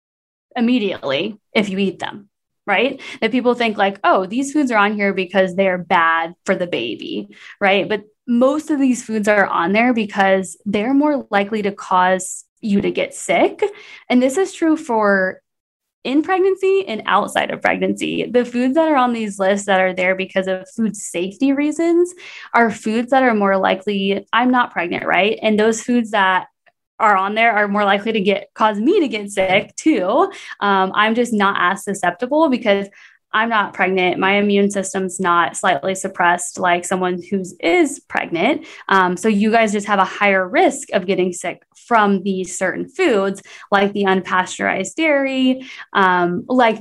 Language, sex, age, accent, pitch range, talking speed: English, female, 10-29, American, 190-245 Hz, 175 wpm